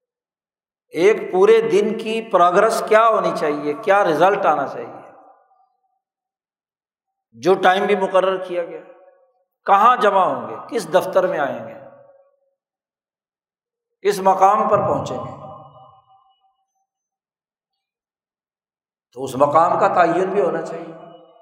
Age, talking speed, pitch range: 60-79, 110 wpm, 170-275 Hz